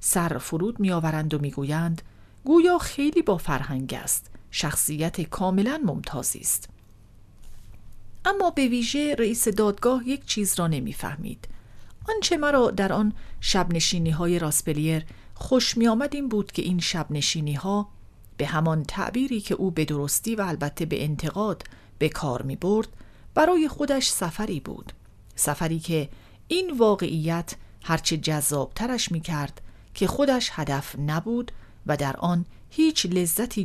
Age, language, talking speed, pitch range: 40-59, English, 140 wpm, 145-210 Hz